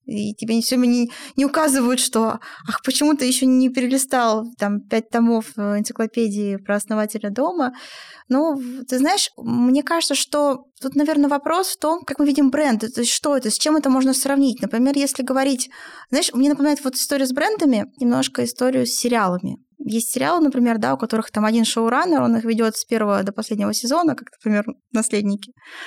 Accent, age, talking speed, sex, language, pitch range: native, 20-39, 180 wpm, female, Russian, 230-285 Hz